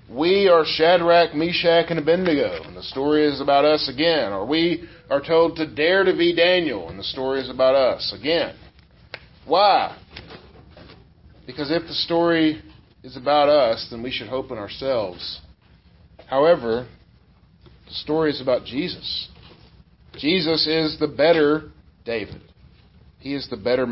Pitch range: 120-155 Hz